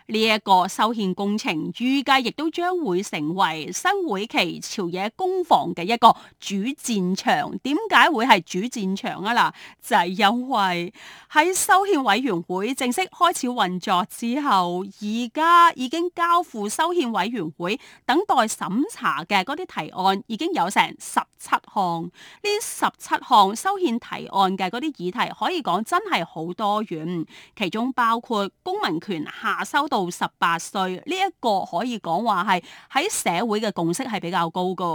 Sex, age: female, 30-49